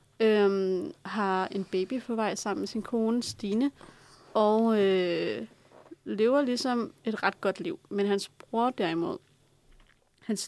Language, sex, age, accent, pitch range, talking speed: Danish, female, 30-49, native, 190-220 Hz, 135 wpm